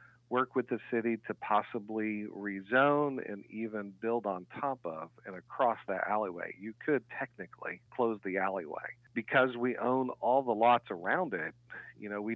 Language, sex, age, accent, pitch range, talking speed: English, male, 40-59, American, 100-125 Hz, 165 wpm